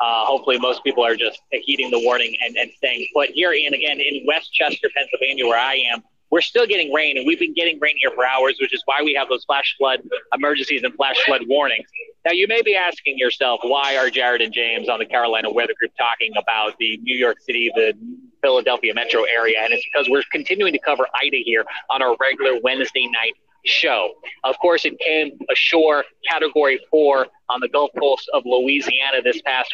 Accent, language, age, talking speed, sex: American, English, 30-49, 210 wpm, male